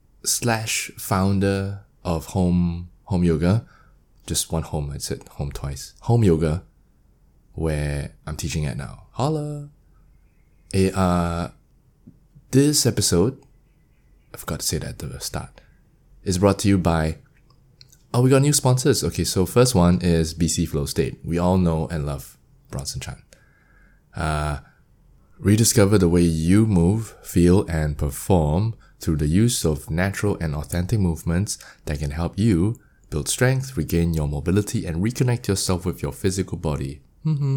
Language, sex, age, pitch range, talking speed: English, male, 20-39, 80-110 Hz, 145 wpm